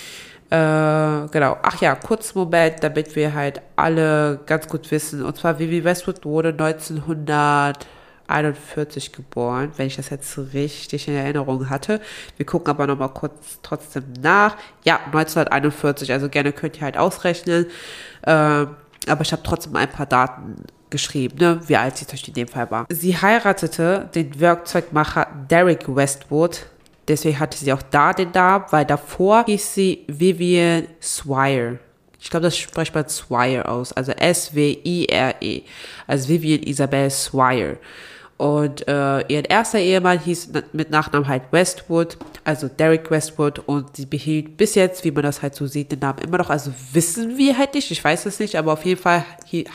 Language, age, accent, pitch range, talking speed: German, 20-39, German, 145-170 Hz, 165 wpm